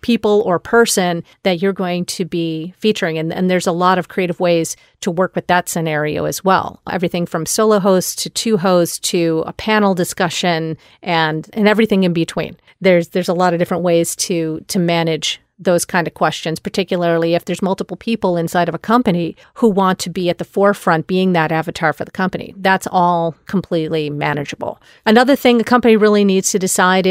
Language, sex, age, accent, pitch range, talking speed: English, female, 40-59, American, 175-205 Hz, 195 wpm